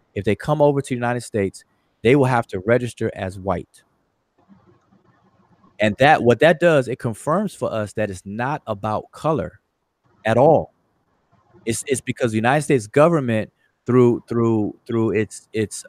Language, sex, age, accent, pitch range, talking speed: English, male, 30-49, American, 105-135 Hz, 160 wpm